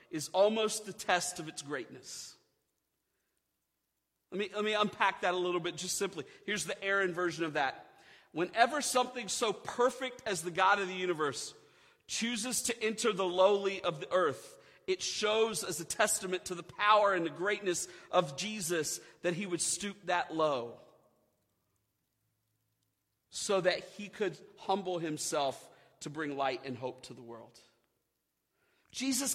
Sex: male